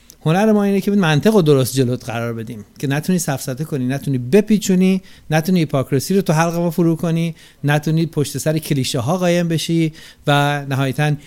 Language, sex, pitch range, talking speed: Persian, male, 140-195 Hz, 165 wpm